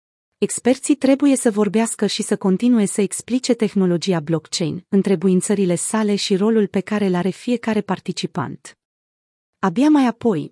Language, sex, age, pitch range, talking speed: Romanian, female, 30-49, 175-220 Hz, 135 wpm